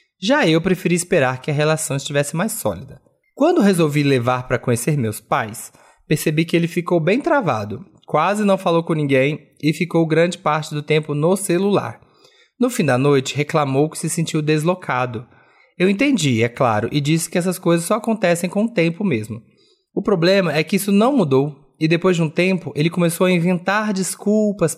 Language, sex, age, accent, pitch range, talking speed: Portuguese, male, 20-39, Brazilian, 135-185 Hz, 185 wpm